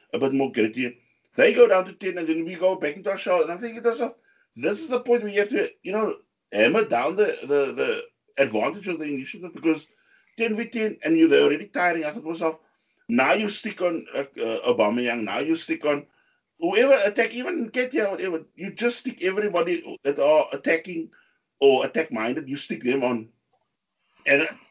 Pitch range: 140-235 Hz